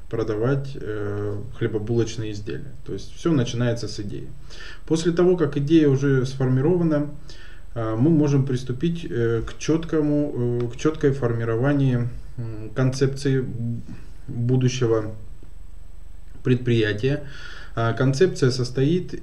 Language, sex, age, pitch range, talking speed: Russian, male, 20-39, 110-140 Hz, 105 wpm